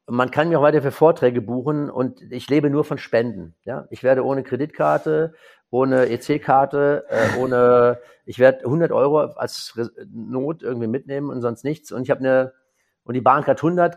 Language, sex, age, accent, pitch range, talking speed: German, male, 50-69, German, 120-145 Hz, 180 wpm